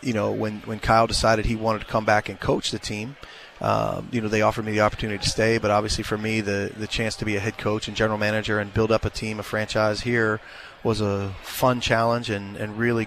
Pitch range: 105-120 Hz